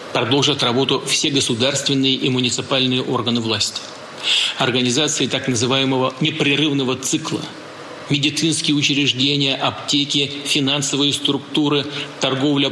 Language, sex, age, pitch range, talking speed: Russian, male, 40-59, 125-150 Hz, 90 wpm